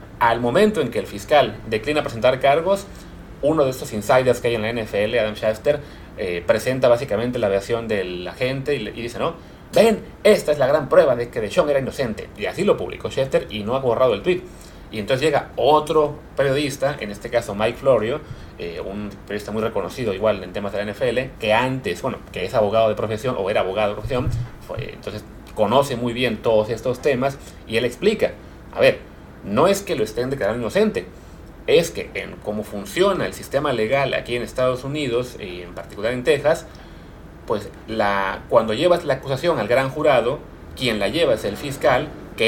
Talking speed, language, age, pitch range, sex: 200 wpm, Spanish, 30-49, 105-145 Hz, male